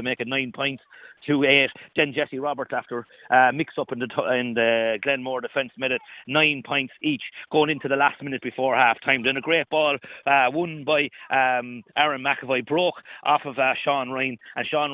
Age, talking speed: 30-49, 205 wpm